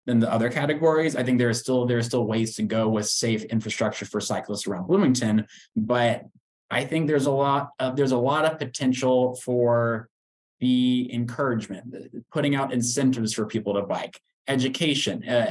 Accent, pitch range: American, 115-140 Hz